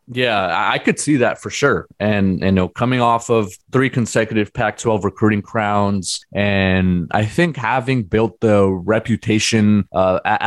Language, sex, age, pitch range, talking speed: English, male, 20-39, 100-125 Hz, 150 wpm